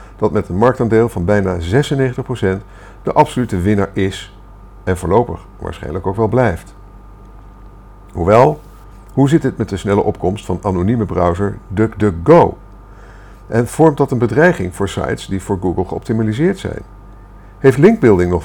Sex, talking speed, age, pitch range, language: male, 145 wpm, 50-69, 95-115 Hz, Dutch